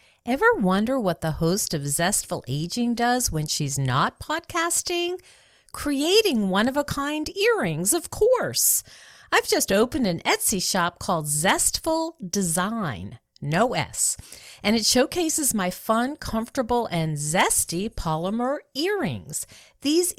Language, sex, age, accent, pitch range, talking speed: English, female, 50-69, American, 180-255 Hz, 120 wpm